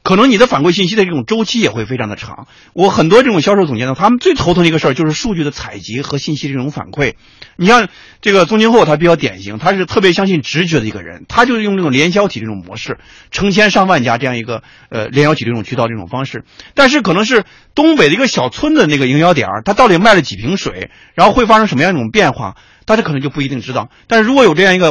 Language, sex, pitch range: Chinese, male, 130-220 Hz